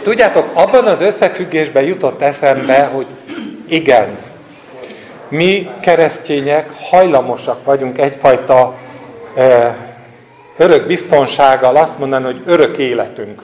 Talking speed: 90 wpm